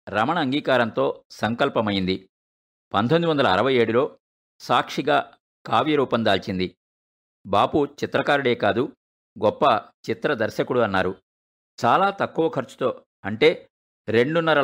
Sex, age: male, 50-69